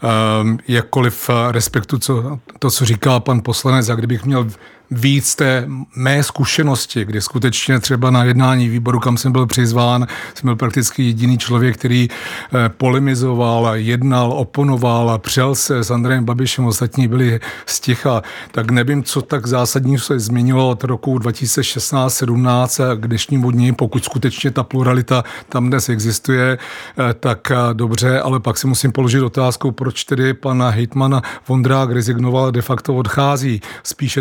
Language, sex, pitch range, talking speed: Czech, male, 120-130 Hz, 145 wpm